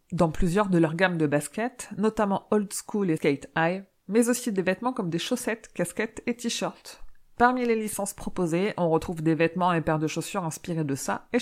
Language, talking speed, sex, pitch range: French, 205 wpm, female, 170-225 Hz